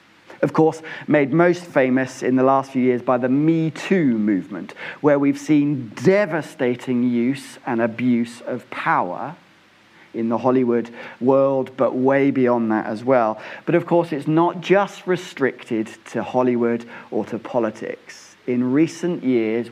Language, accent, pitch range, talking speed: English, British, 120-170 Hz, 150 wpm